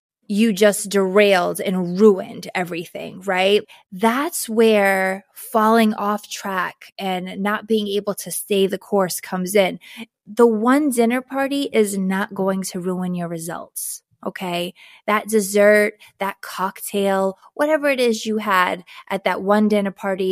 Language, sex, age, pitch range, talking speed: English, female, 20-39, 190-230 Hz, 140 wpm